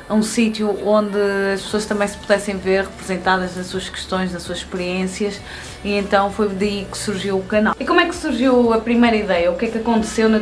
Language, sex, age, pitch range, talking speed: Portuguese, female, 20-39, 185-210 Hz, 220 wpm